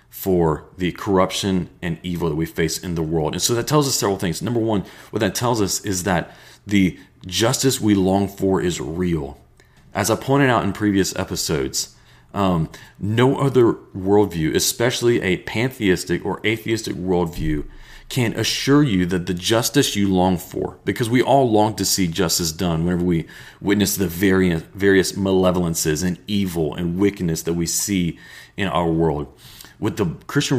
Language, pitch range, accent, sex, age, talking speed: English, 85-115 Hz, American, male, 40-59, 170 wpm